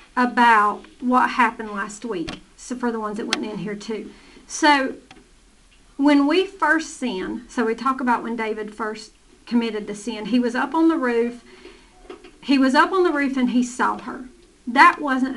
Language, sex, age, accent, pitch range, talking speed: English, female, 40-59, American, 220-275 Hz, 185 wpm